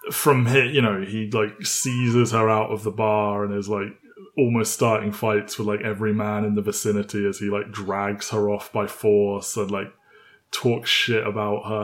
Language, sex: English, male